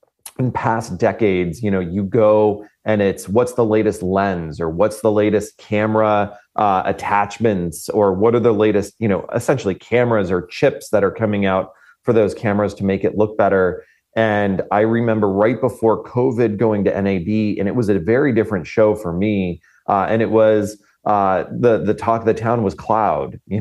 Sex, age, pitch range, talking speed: male, 30-49, 95-110 Hz, 190 wpm